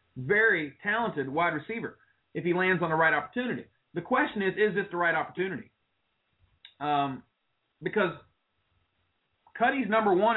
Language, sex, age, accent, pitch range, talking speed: English, male, 30-49, American, 145-230 Hz, 140 wpm